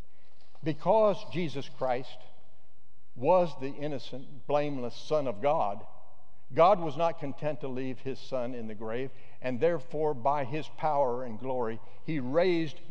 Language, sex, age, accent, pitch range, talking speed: English, male, 60-79, American, 110-160 Hz, 140 wpm